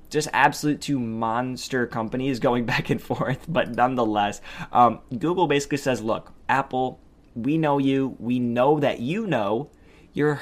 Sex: male